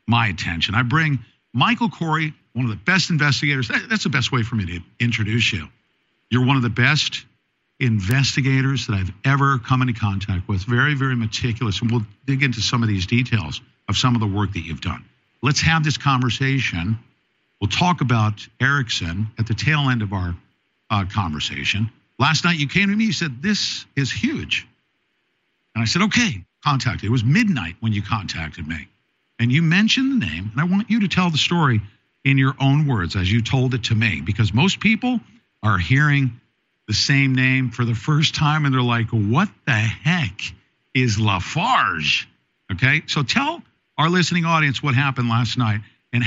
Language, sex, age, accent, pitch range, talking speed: English, male, 50-69, American, 110-145 Hz, 190 wpm